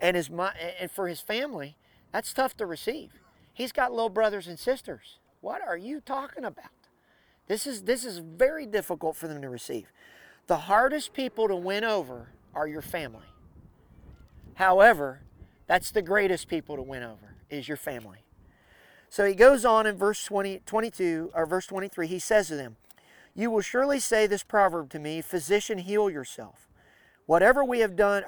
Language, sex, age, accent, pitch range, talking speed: English, male, 40-59, American, 160-215 Hz, 170 wpm